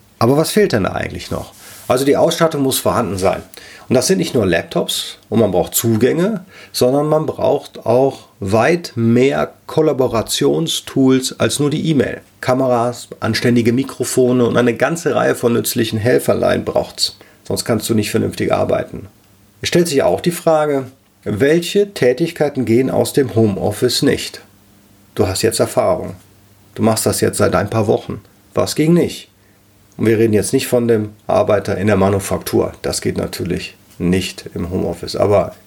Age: 40-59